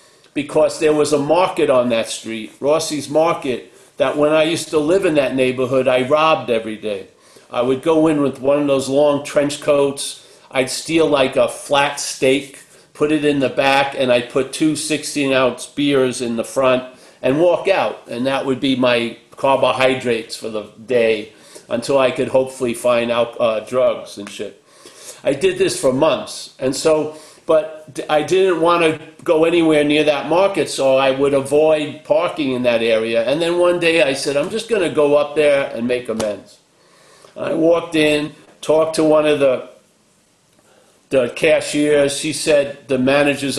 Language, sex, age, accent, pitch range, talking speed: English, male, 50-69, American, 130-155 Hz, 180 wpm